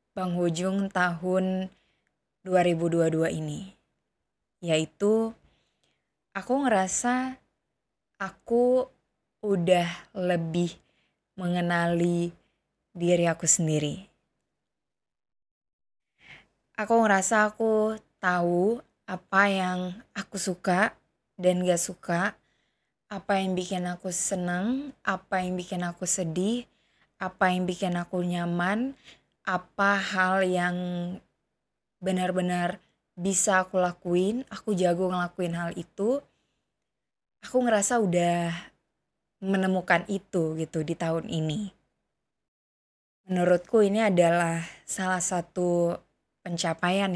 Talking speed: 85 wpm